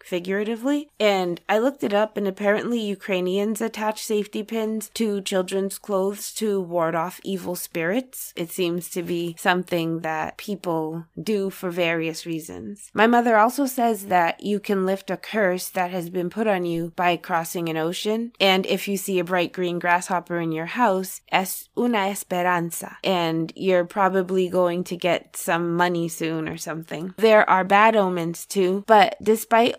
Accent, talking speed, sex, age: American, 165 wpm, female, 20-39